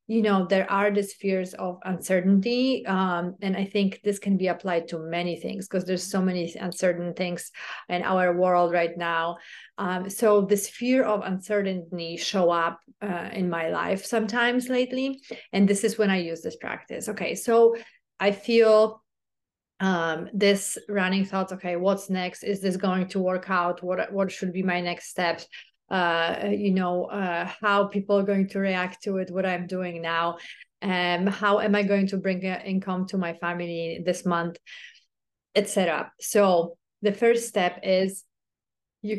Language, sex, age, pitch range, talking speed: English, female, 30-49, 180-205 Hz, 170 wpm